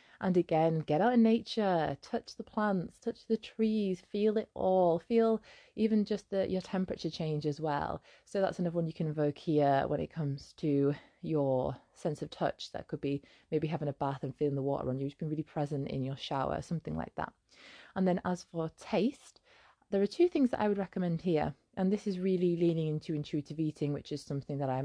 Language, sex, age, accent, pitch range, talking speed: English, female, 20-39, British, 150-195 Hz, 215 wpm